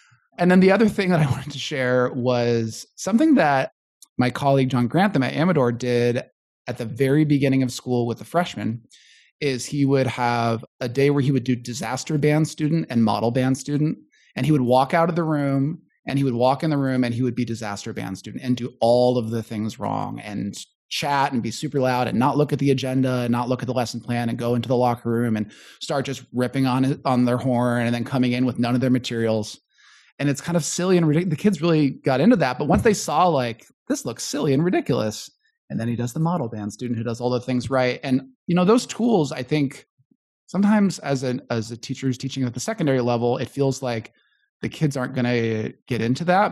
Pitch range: 120-150 Hz